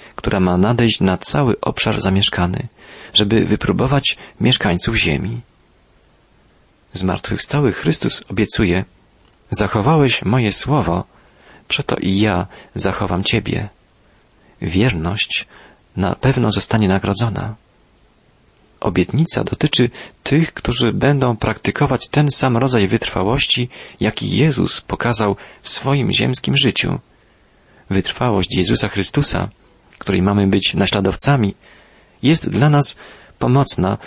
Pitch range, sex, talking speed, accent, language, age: 95-135 Hz, male, 95 wpm, native, Polish, 40-59